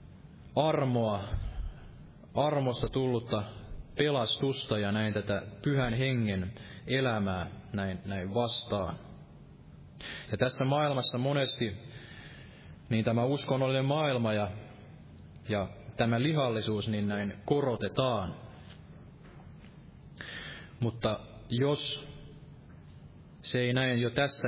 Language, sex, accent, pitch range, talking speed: Finnish, male, native, 105-130 Hz, 85 wpm